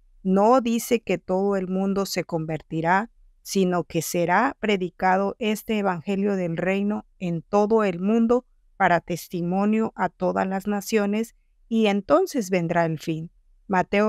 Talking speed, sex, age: 135 wpm, female, 50-69